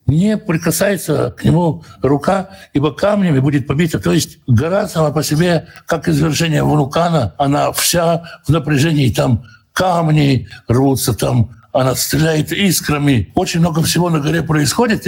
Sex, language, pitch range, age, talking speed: male, Russian, 130-170 Hz, 60-79, 140 wpm